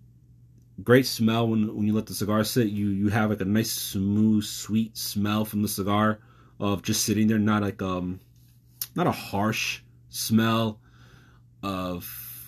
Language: English